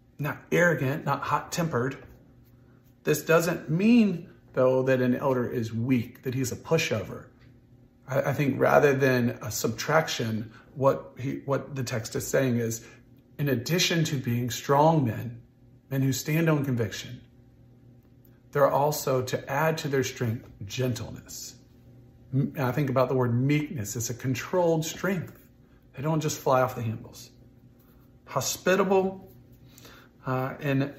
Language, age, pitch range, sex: English, 40-59, 125-145 Hz, male